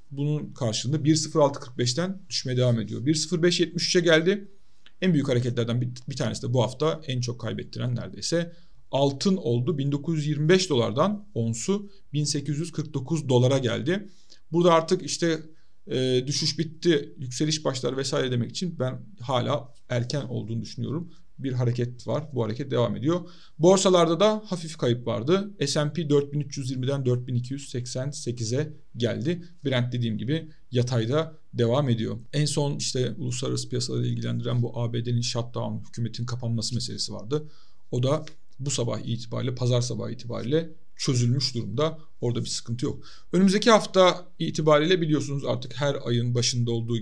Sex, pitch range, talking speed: male, 120-155 Hz, 130 wpm